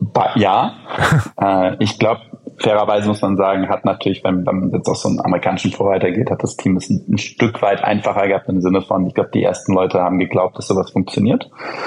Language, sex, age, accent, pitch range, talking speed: German, male, 20-39, German, 90-105 Hz, 210 wpm